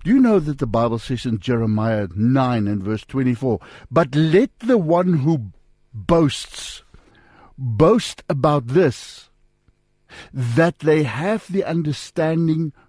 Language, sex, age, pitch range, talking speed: English, male, 60-79, 120-170 Hz, 125 wpm